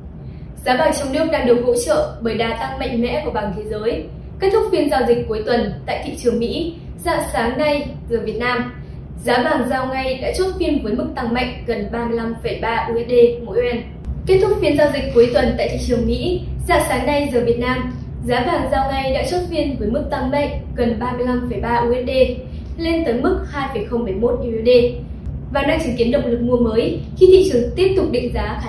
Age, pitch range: 10-29, 230-295 Hz